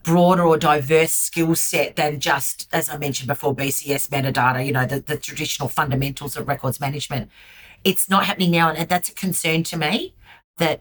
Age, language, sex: 40-59, English, female